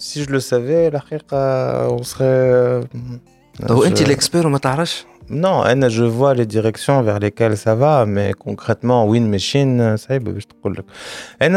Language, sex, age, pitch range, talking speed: Arabic, male, 20-39, 105-135 Hz, 125 wpm